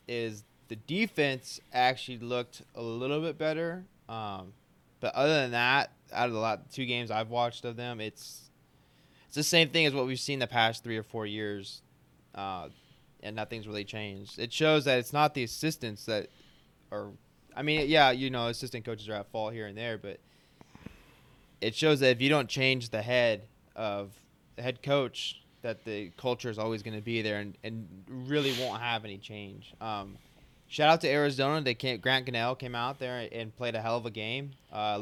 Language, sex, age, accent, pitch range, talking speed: English, male, 20-39, American, 110-135 Hz, 200 wpm